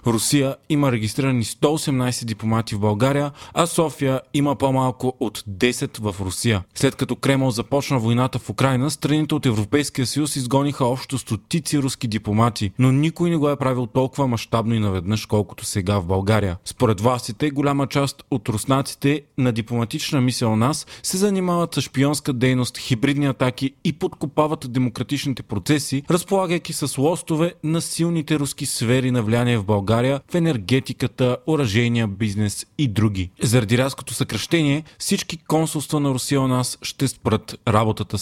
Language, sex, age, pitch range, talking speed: Bulgarian, male, 30-49, 120-150 Hz, 150 wpm